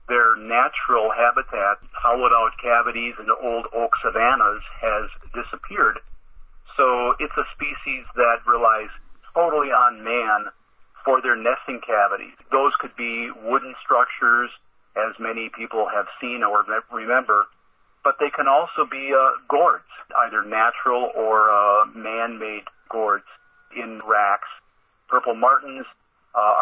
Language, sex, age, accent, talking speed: English, male, 40-59, American, 120 wpm